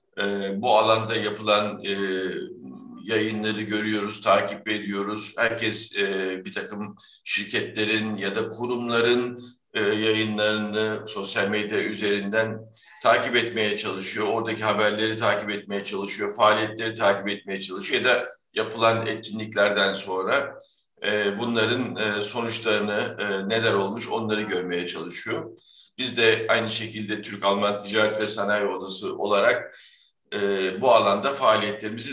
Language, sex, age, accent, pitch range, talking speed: Turkish, male, 50-69, native, 105-115 Hz, 120 wpm